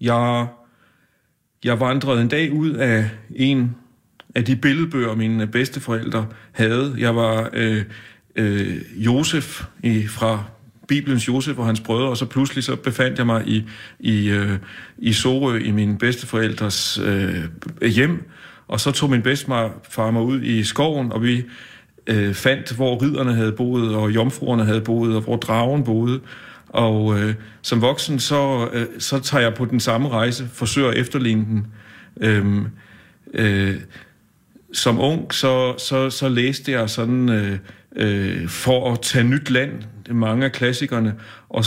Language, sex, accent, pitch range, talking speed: Danish, male, native, 110-130 Hz, 155 wpm